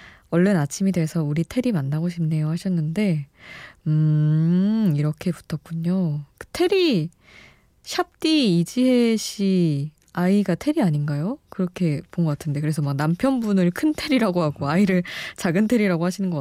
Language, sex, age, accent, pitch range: Korean, female, 20-39, native, 155-200 Hz